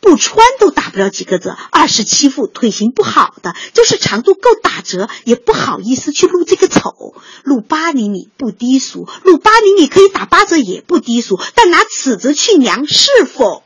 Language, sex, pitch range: Chinese, female, 240-380 Hz